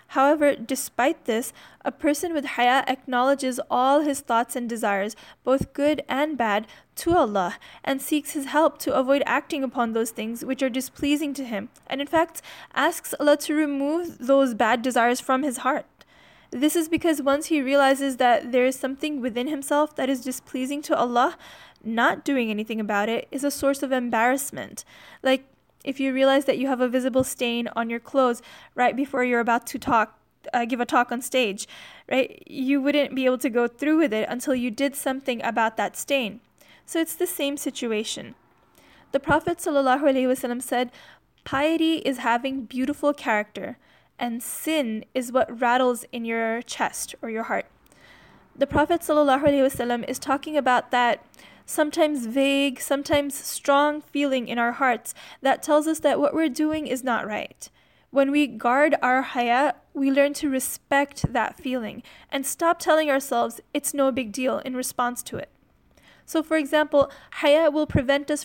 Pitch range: 245-290 Hz